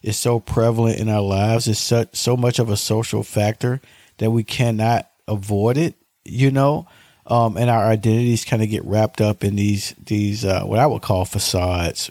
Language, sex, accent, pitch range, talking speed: English, male, American, 100-120 Hz, 195 wpm